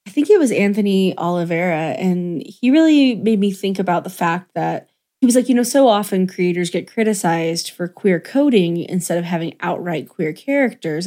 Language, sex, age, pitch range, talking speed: English, female, 20-39, 175-230 Hz, 190 wpm